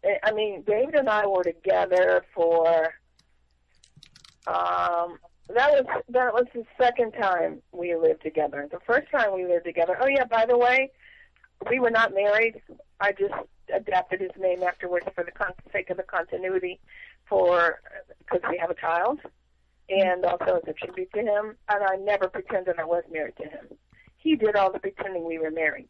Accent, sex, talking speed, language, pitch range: American, female, 185 wpm, English, 170-245 Hz